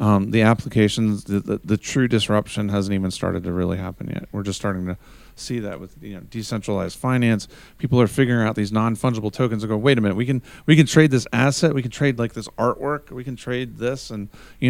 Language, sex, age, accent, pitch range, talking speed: English, male, 40-59, American, 110-135 Hz, 235 wpm